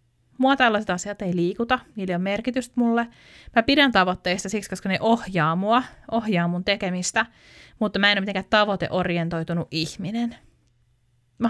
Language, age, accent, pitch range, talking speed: Finnish, 30-49, native, 175-230 Hz, 145 wpm